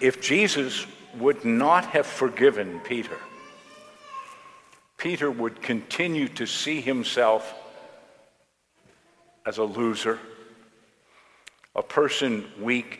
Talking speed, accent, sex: 90 wpm, American, male